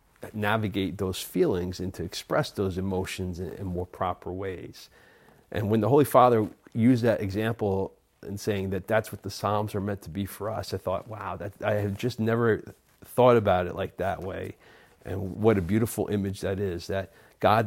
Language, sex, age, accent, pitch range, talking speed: English, male, 40-59, American, 95-110 Hz, 190 wpm